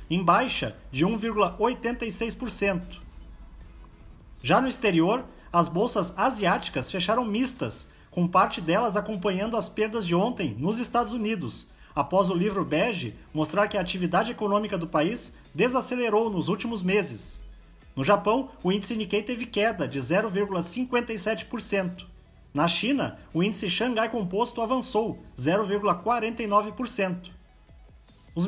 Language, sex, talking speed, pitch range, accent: Portuguese, male, 120 wpm, 185-230 Hz, Brazilian